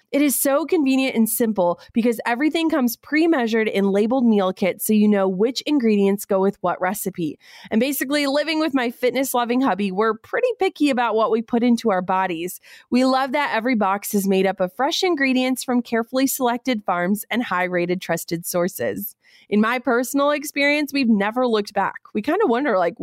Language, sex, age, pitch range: English, female, 20-39, 195-260 Hz